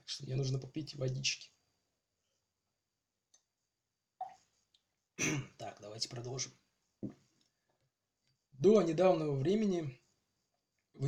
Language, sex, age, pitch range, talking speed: Russian, male, 20-39, 135-165 Hz, 65 wpm